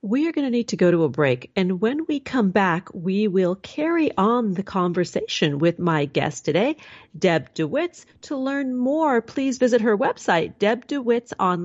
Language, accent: English, American